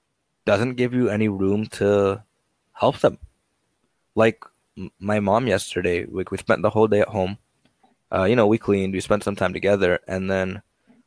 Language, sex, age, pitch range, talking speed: English, male, 20-39, 100-120 Hz, 175 wpm